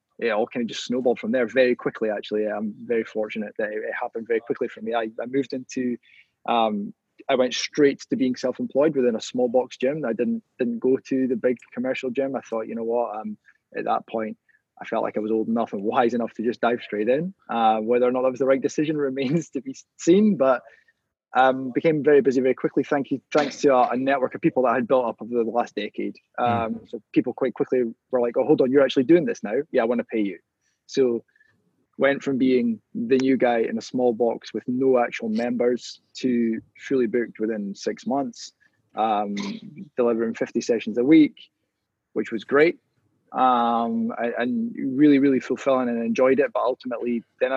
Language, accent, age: English, British, 20-39